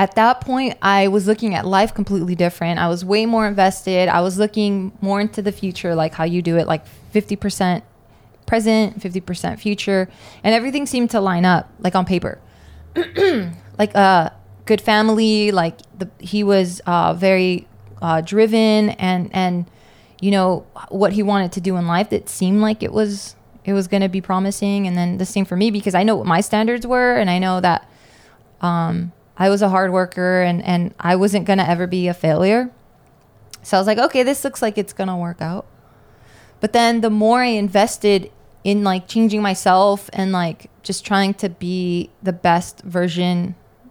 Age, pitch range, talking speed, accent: 20-39, 180-210 Hz, 190 wpm, American